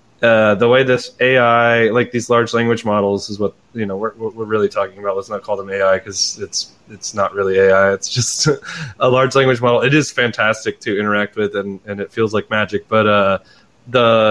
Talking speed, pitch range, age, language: 215 wpm, 105-120 Hz, 20-39, English